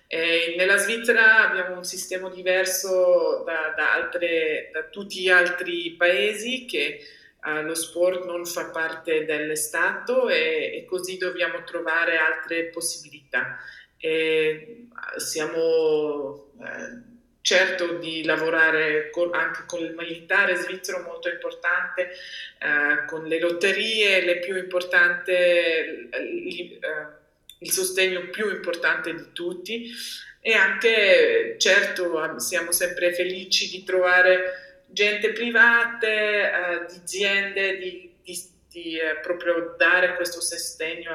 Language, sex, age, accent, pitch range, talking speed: Italian, female, 20-39, native, 165-200 Hz, 115 wpm